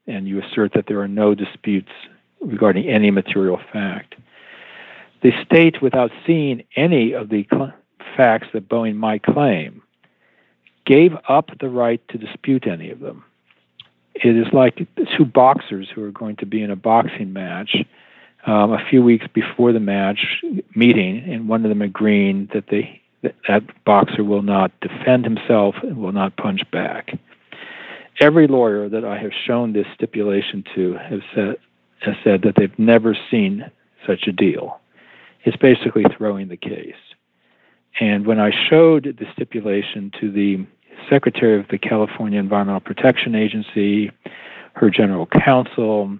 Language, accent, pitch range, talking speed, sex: English, American, 100-120 Hz, 150 wpm, male